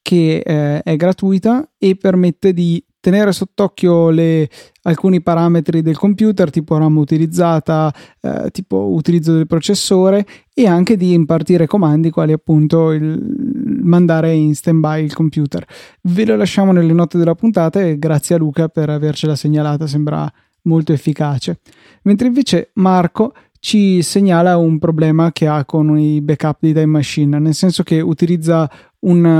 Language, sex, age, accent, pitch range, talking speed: Italian, male, 30-49, native, 155-185 Hz, 150 wpm